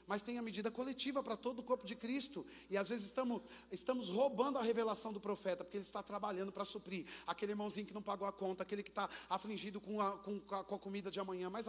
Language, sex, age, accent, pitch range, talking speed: Portuguese, male, 40-59, Brazilian, 195-235 Hz, 245 wpm